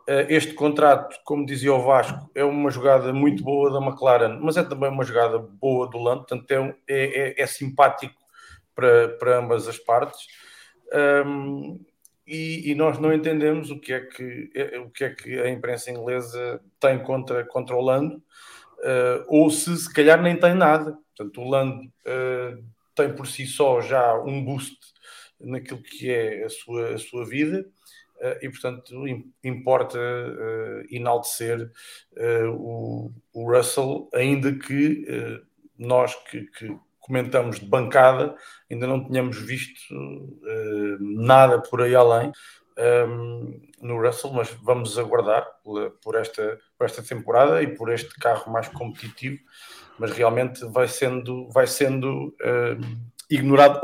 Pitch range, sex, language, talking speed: 120-150 Hz, male, English, 140 wpm